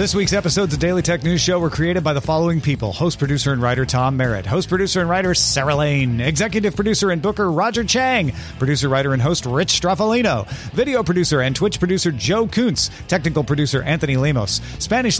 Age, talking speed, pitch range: 40-59, 195 wpm, 140-200 Hz